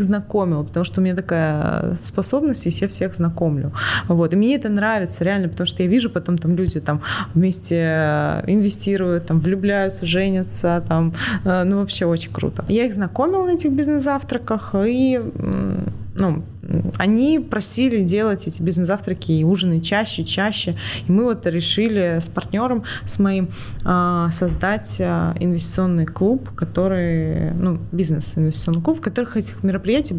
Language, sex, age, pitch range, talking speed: Russian, female, 20-39, 165-205 Hz, 140 wpm